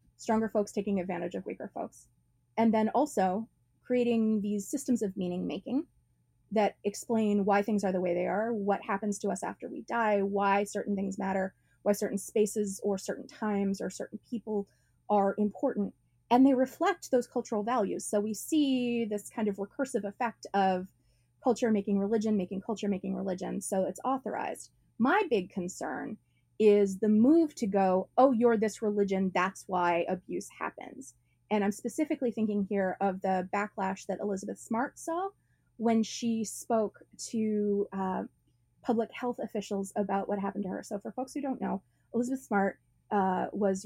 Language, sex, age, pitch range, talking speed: English, female, 20-39, 195-230 Hz, 170 wpm